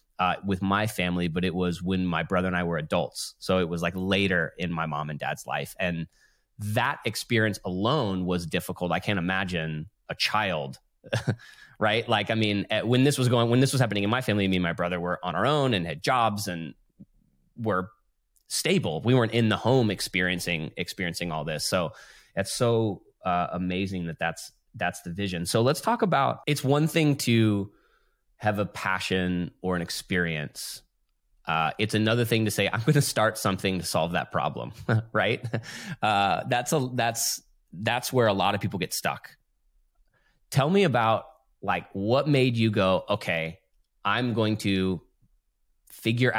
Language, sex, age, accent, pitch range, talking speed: English, male, 20-39, American, 90-115 Hz, 180 wpm